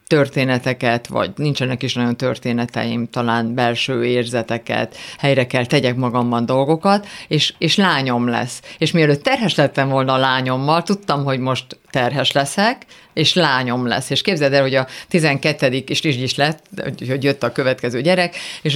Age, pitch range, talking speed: 50-69, 130-160 Hz, 155 wpm